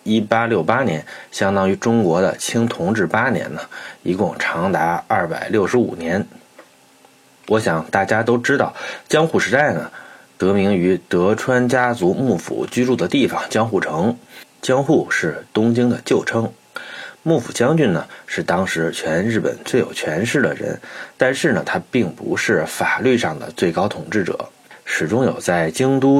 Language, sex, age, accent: Chinese, male, 30-49, native